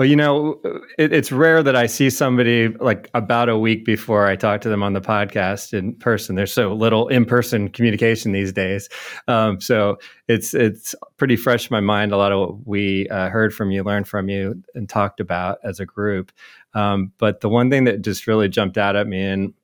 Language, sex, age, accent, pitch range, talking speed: English, male, 30-49, American, 100-120 Hz, 215 wpm